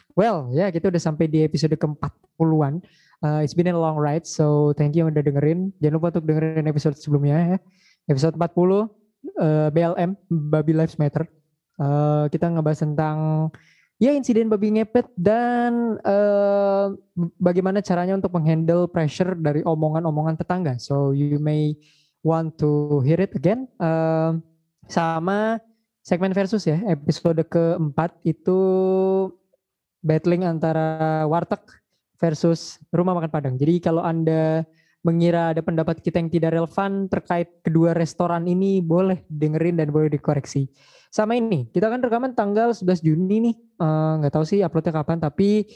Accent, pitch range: native, 155-185 Hz